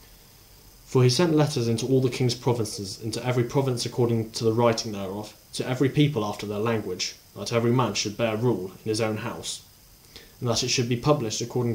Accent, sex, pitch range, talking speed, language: British, male, 105-120 Hz, 205 wpm, English